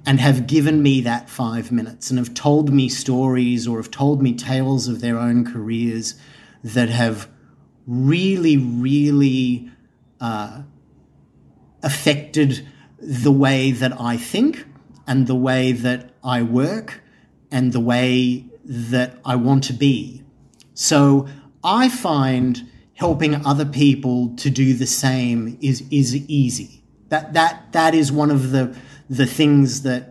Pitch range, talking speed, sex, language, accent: 125-145 Hz, 140 wpm, male, English, Australian